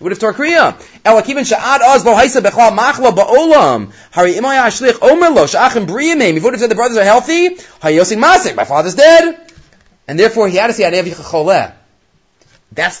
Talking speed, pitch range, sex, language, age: 100 wpm, 150-230 Hz, male, English, 30-49